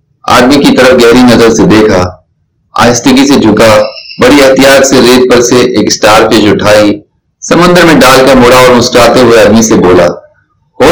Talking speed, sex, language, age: 150 wpm, male, Urdu, 30-49